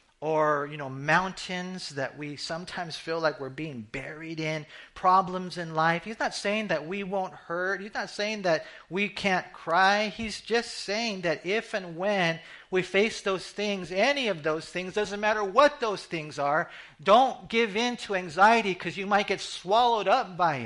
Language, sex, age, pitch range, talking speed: English, male, 40-59, 150-200 Hz, 185 wpm